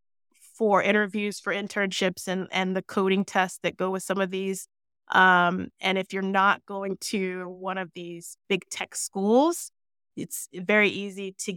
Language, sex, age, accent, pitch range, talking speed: English, female, 20-39, American, 175-205 Hz, 165 wpm